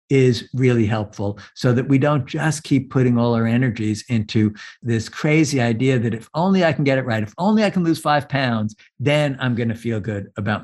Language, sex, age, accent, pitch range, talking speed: English, male, 50-69, American, 115-165 Hz, 215 wpm